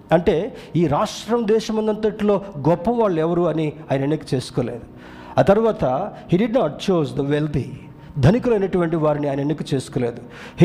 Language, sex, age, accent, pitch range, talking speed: Telugu, male, 50-69, native, 150-205 Hz, 140 wpm